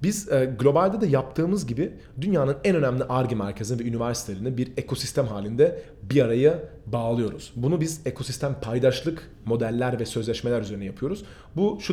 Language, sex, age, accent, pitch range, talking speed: Turkish, male, 40-59, native, 120-185 Hz, 145 wpm